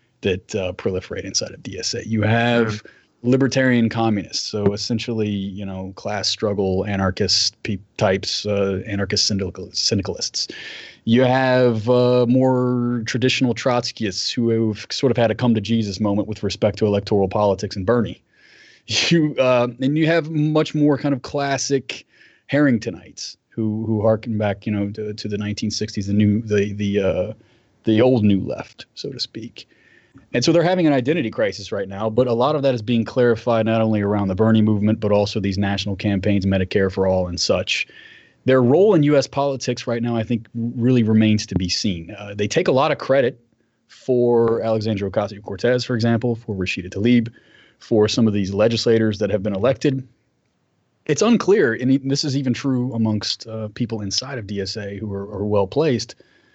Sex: male